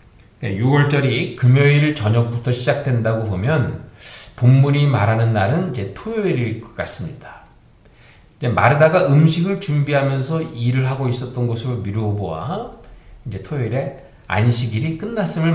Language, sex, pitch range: Korean, male, 110-155 Hz